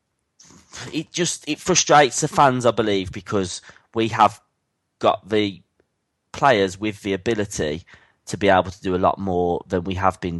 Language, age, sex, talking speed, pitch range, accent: English, 20-39, male, 165 wpm, 90-110 Hz, British